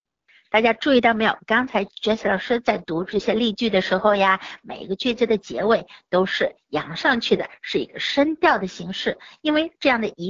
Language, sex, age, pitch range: Chinese, female, 60-79, 195-275 Hz